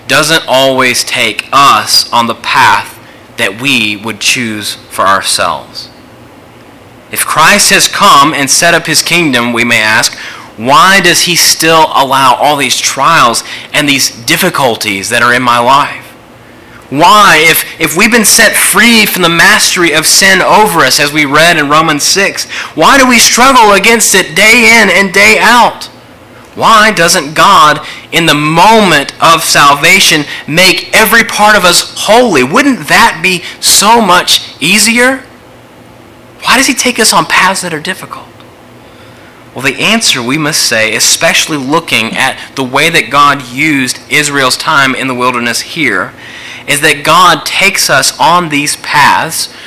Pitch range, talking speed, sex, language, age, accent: 135-195 Hz, 155 wpm, male, English, 30-49, American